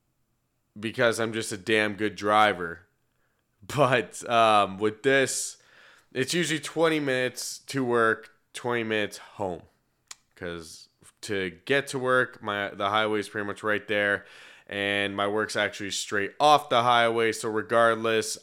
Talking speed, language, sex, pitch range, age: 140 wpm, English, male, 110-145 Hz, 20-39